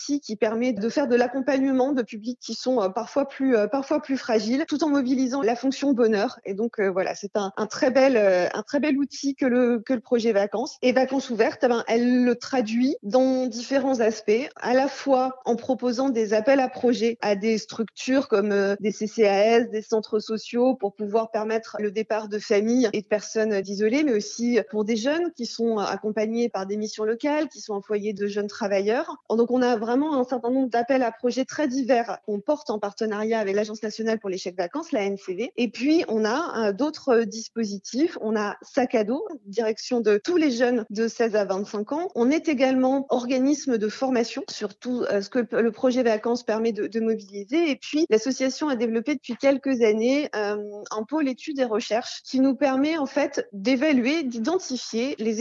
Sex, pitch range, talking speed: female, 215-265 Hz, 190 wpm